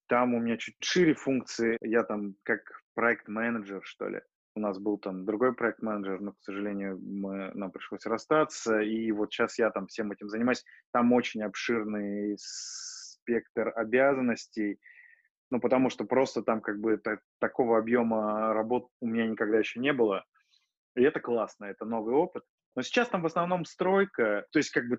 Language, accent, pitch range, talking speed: Russian, native, 105-130 Hz, 165 wpm